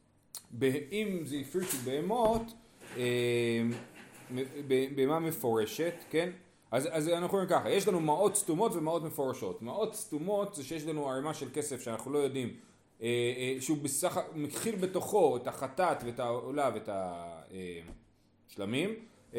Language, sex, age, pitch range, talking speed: Hebrew, male, 30-49, 130-185 Hz, 120 wpm